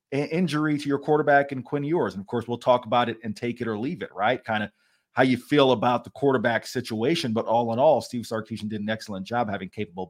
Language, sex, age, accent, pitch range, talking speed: English, male, 30-49, American, 115-145 Hz, 250 wpm